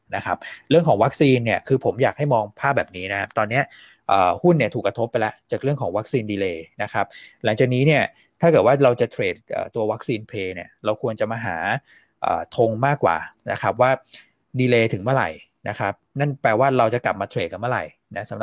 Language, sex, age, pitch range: Thai, male, 20-39, 95-130 Hz